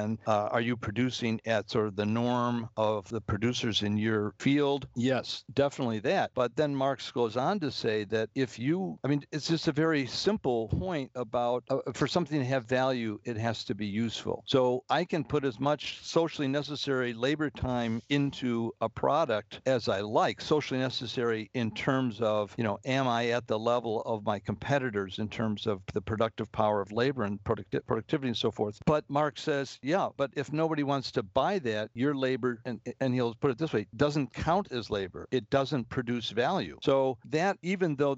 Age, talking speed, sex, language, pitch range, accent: 60-79, 195 wpm, male, English, 115-140 Hz, American